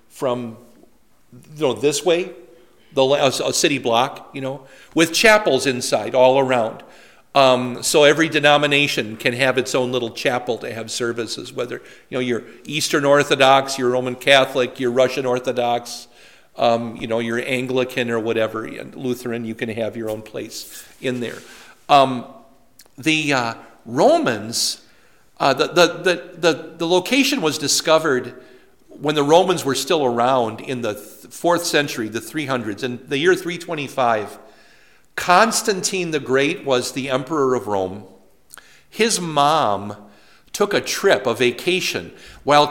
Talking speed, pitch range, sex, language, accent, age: 145 wpm, 125-175 Hz, male, English, American, 50-69